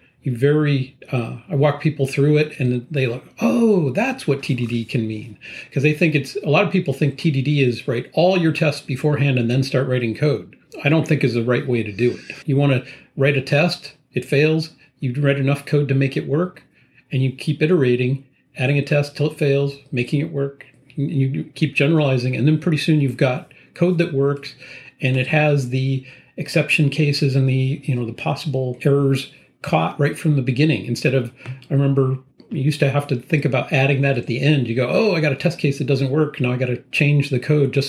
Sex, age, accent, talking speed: male, 40-59, American, 225 wpm